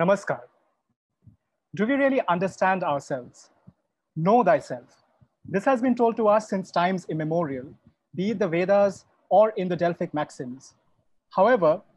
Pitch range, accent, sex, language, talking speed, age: 160-215 Hz, Indian, male, English, 135 wpm, 30-49